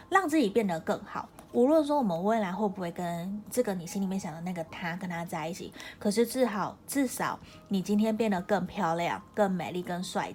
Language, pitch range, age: Chinese, 180-220 Hz, 20-39